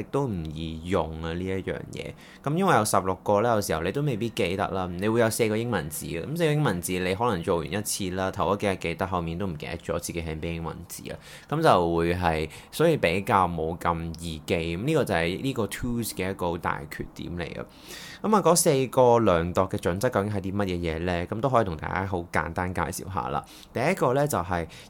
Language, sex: Chinese, male